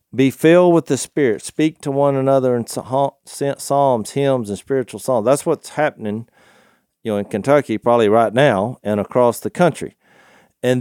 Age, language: 50-69, English